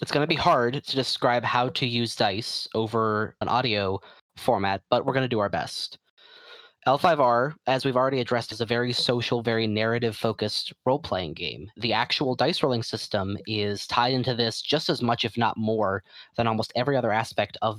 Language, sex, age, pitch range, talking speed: English, male, 20-39, 110-135 Hz, 190 wpm